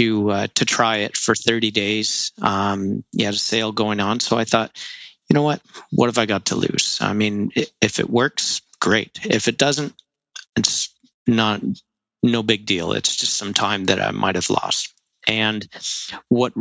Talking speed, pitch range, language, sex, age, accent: 190 wpm, 105-120 Hz, English, male, 40-59, American